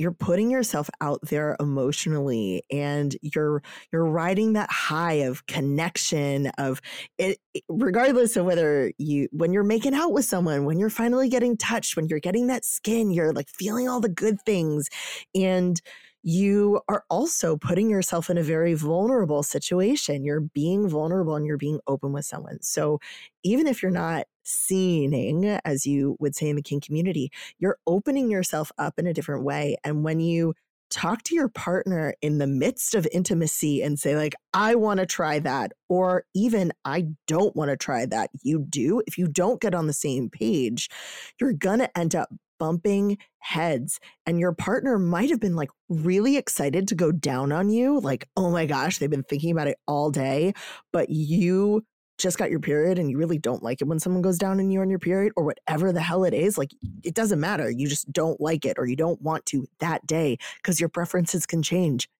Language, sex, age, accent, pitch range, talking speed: English, female, 20-39, American, 150-190 Hz, 195 wpm